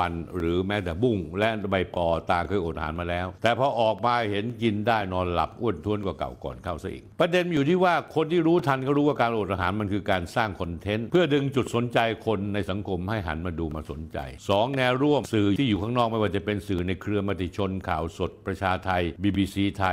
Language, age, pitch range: Thai, 60-79, 95-120 Hz